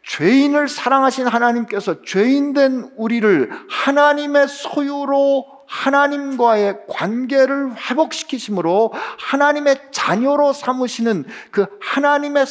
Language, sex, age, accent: Korean, male, 50-69, native